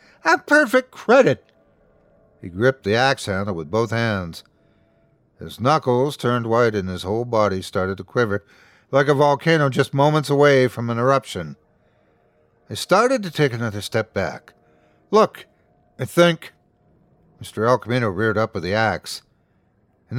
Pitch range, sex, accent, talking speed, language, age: 105-150 Hz, male, American, 150 wpm, English, 60-79